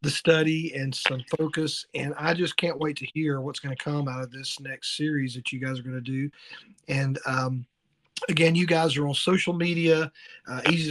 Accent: American